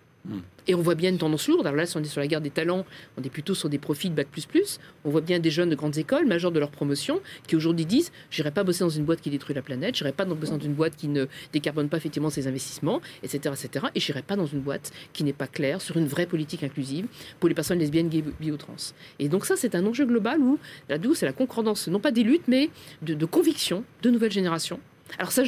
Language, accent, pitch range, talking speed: French, French, 145-185 Hz, 280 wpm